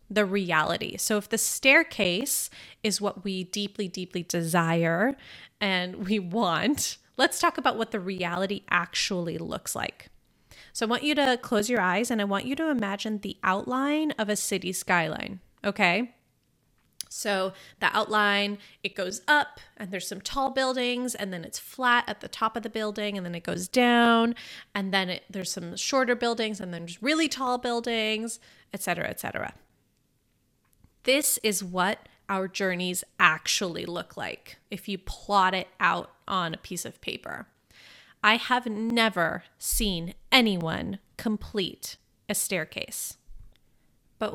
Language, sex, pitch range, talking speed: English, female, 185-235 Hz, 155 wpm